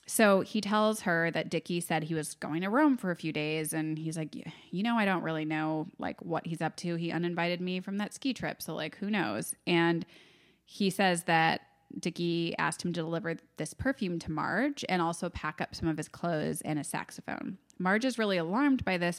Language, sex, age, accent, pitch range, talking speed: English, female, 20-39, American, 165-205 Hz, 220 wpm